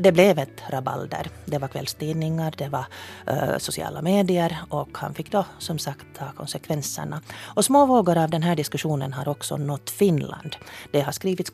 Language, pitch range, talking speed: Finnish, 145-190 Hz, 175 wpm